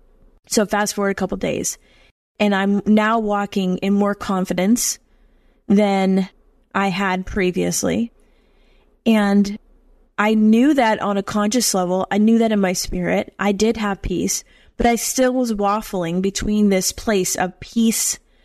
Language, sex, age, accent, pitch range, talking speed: English, female, 20-39, American, 190-225 Hz, 150 wpm